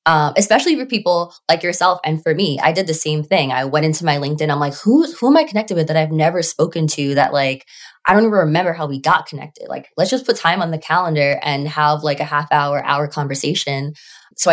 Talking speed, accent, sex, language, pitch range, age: 245 wpm, American, female, English, 145-170 Hz, 20-39